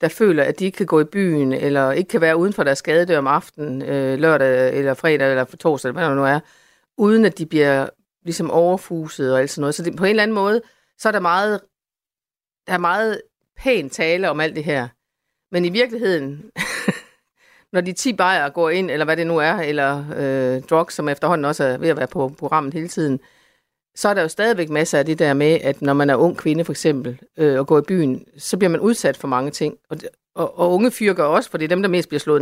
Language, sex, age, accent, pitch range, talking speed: Danish, female, 60-79, native, 145-190 Hz, 240 wpm